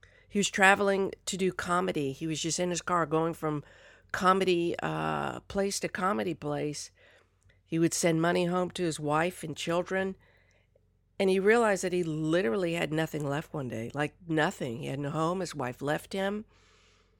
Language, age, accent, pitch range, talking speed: English, 50-69, American, 110-180 Hz, 180 wpm